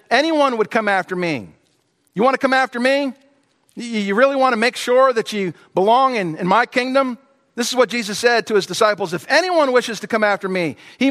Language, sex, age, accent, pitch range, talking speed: English, male, 50-69, American, 195-265 Hz, 215 wpm